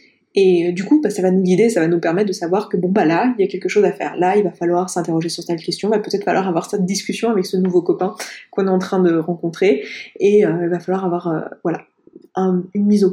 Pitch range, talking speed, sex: 195-255 Hz, 290 wpm, female